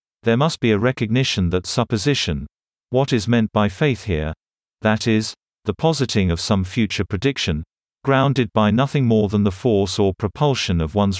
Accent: British